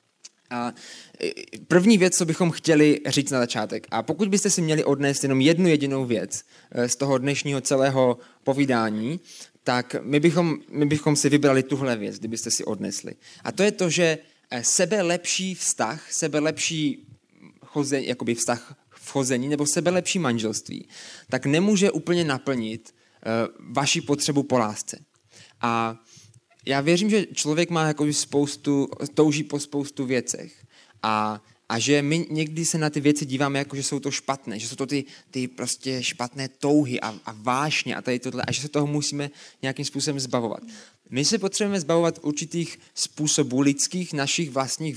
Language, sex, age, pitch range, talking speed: Czech, male, 20-39, 125-155 Hz, 155 wpm